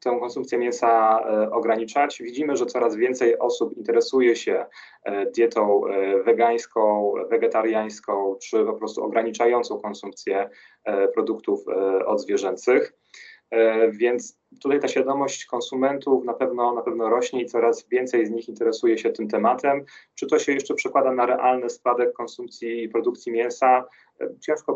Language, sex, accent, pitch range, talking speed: Polish, male, native, 115-135 Hz, 125 wpm